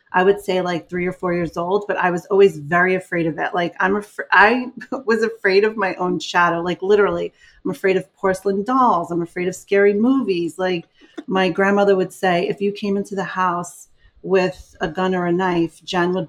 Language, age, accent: English, 30-49, American